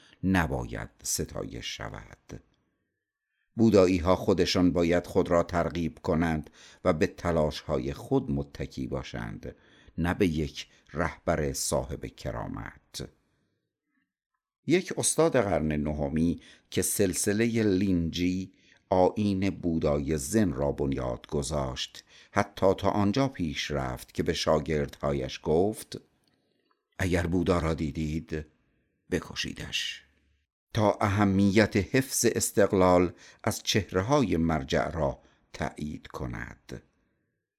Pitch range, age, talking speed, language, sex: 75-100 Hz, 50-69, 100 wpm, Persian, male